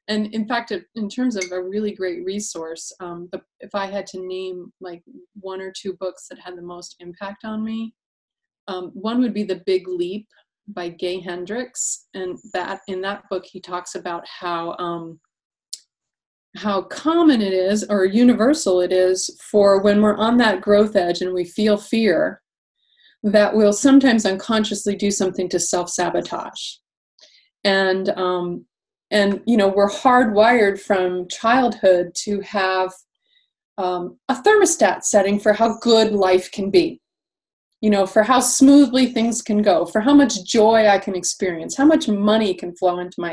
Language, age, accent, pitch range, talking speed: English, 30-49, American, 185-245 Hz, 165 wpm